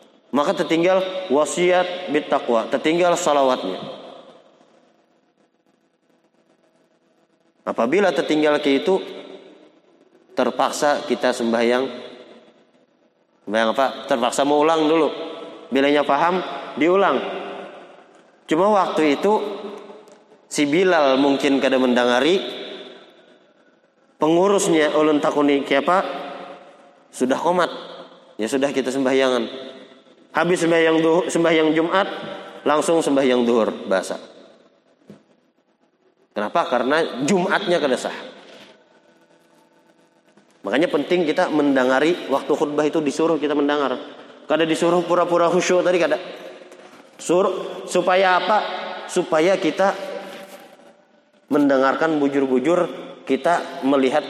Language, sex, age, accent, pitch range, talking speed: Indonesian, male, 30-49, native, 135-180 Hz, 90 wpm